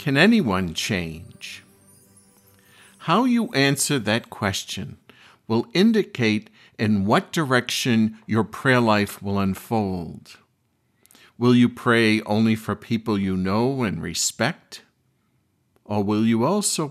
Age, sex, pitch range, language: 50-69, male, 100-125 Hz, English